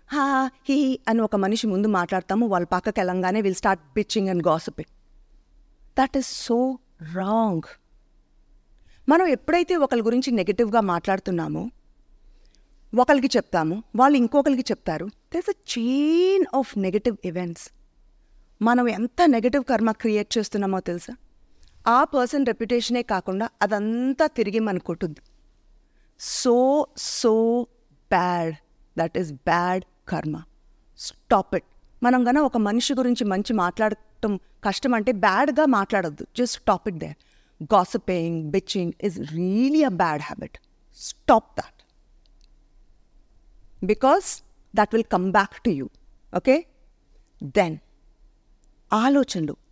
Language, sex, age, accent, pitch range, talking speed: Telugu, female, 30-49, native, 180-250 Hz, 115 wpm